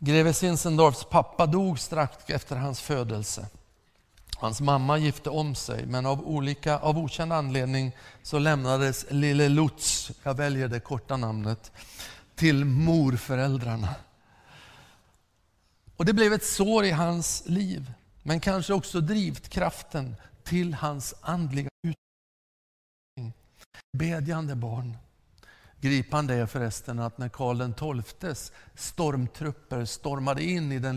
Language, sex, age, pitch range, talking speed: Swedish, male, 50-69, 115-150 Hz, 120 wpm